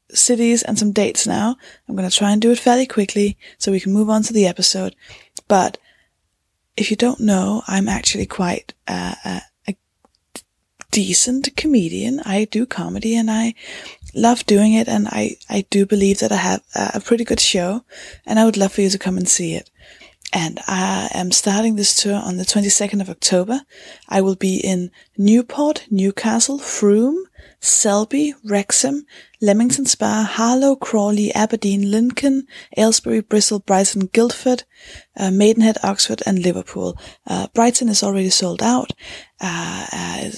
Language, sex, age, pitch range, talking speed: English, female, 20-39, 195-230 Hz, 160 wpm